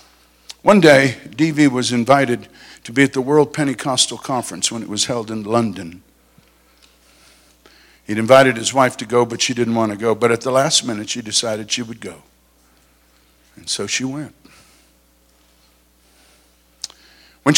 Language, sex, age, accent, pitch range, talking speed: English, male, 60-79, American, 105-160 Hz, 155 wpm